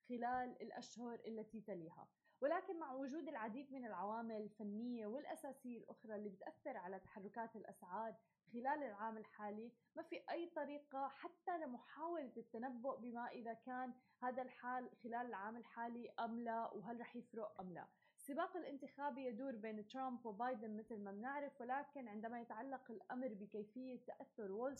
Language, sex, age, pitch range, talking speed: Arabic, female, 20-39, 220-260 Hz, 145 wpm